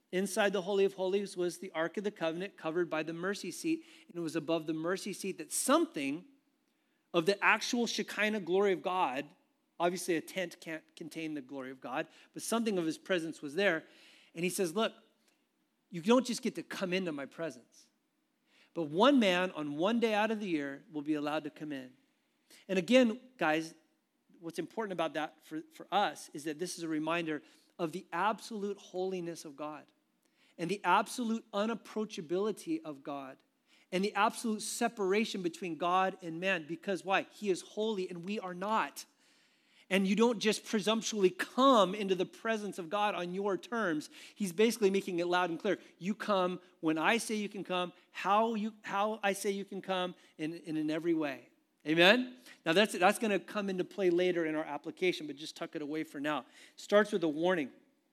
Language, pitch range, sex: English, 170-230 Hz, male